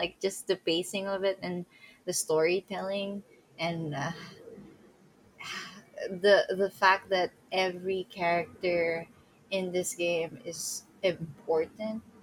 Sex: female